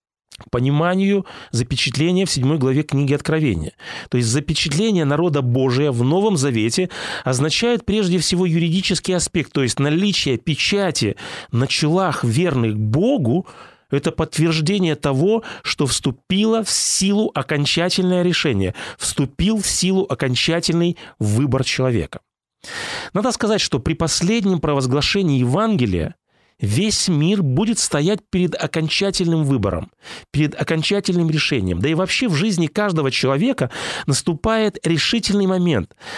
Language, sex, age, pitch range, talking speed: Russian, male, 30-49, 135-190 Hz, 120 wpm